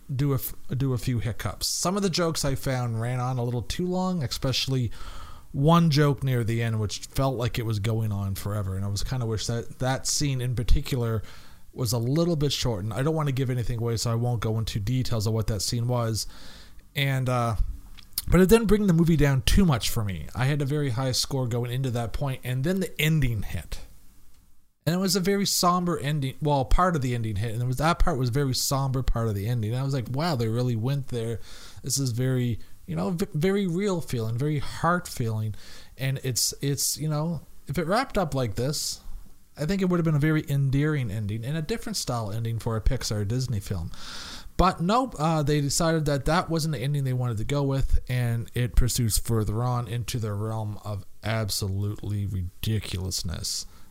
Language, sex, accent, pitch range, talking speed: English, male, American, 110-145 Hz, 220 wpm